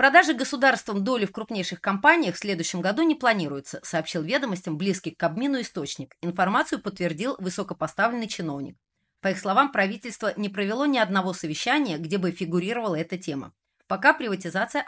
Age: 30-49